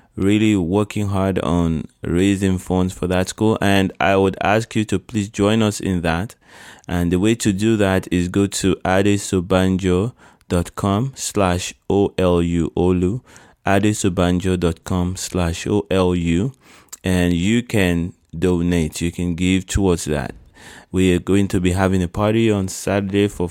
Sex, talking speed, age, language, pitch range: male, 145 wpm, 20-39, English, 85-100 Hz